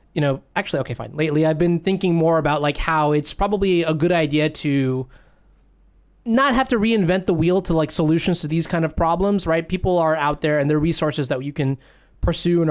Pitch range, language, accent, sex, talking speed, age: 150-190 Hz, English, American, male, 215 wpm, 20-39